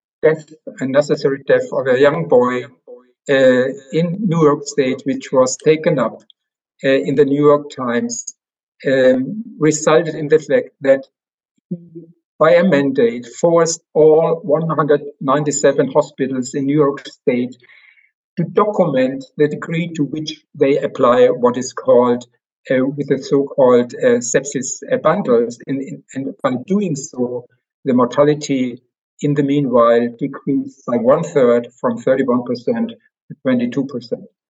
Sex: male